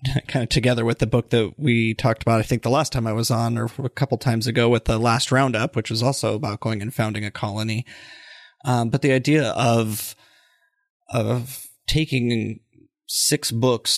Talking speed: 195 wpm